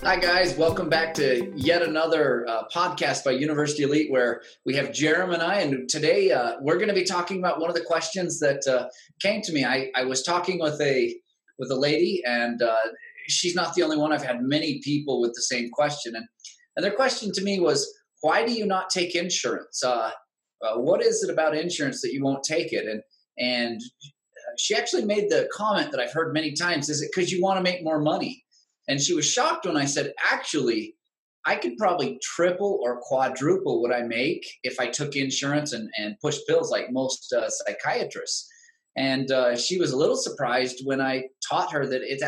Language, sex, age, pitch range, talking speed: English, male, 30-49, 130-190 Hz, 210 wpm